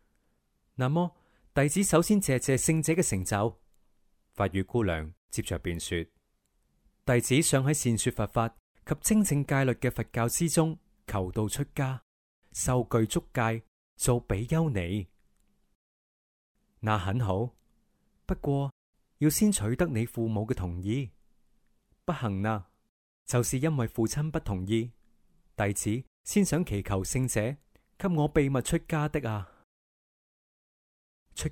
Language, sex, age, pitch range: Chinese, male, 30-49, 95-140 Hz